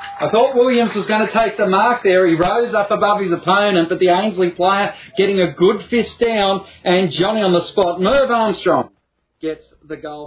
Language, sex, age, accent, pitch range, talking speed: English, male, 40-59, Australian, 165-215 Hz, 205 wpm